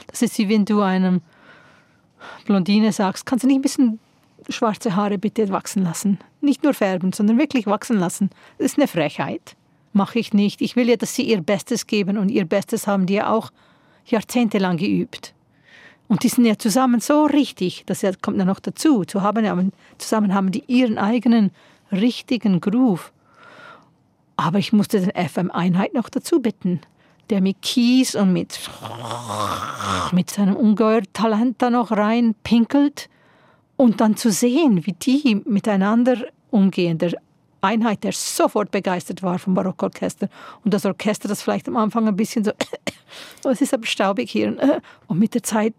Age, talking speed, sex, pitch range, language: 40-59, 165 wpm, female, 195-240 Hz, German